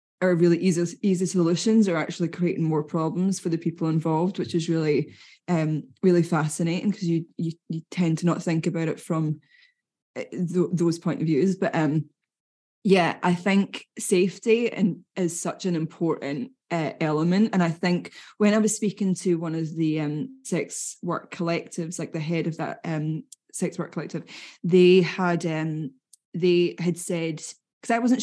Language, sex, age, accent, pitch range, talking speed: English, female, 10-29, British, 160-190 Hz, 175 wpm